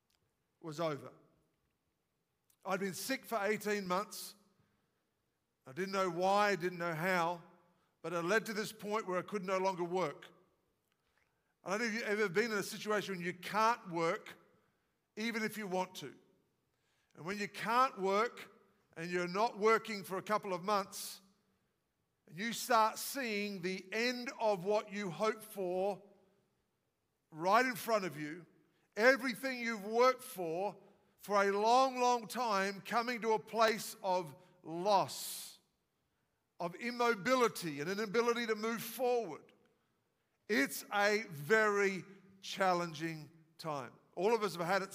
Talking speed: 145 wpm